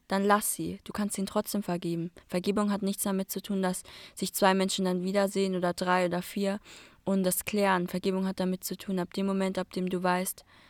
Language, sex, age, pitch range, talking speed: German, female, 20-39, 180-205 Hz, 220 wpm